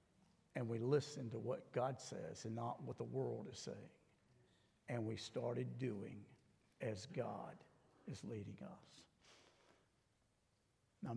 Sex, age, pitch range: male, 60-79, 110-135 Hz